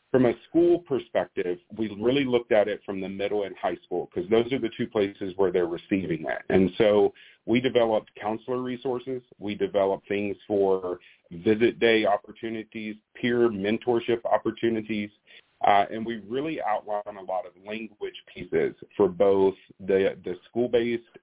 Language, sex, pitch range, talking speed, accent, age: English, male, 95-130 Hz, 160 wpm, American, 40-59